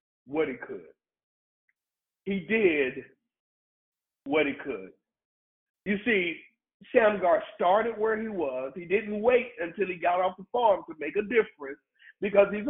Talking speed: 140 wpm